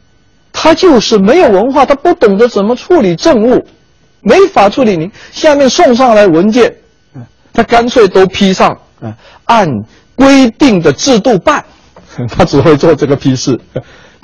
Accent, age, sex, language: native, 50-69, male, Chinese